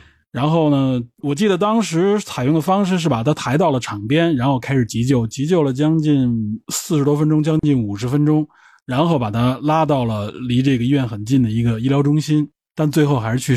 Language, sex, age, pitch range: Chinese, male, 20-39, 120-155 Hz